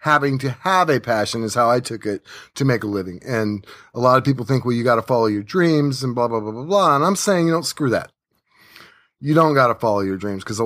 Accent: American